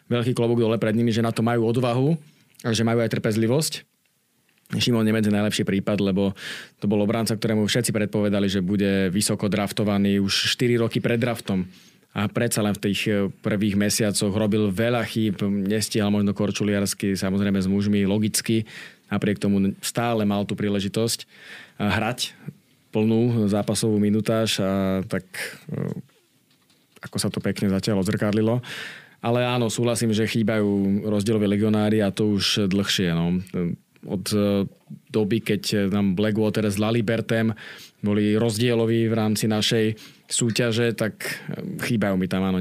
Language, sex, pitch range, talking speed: Slovak, male, 100-115 Hz, 145 wpm